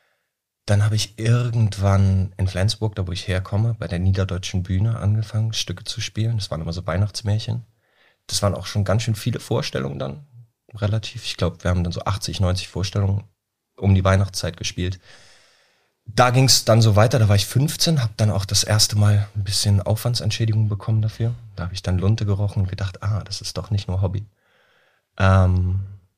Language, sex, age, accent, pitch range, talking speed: German, male, 30-49, German, 95-110 Hz, 190 wpm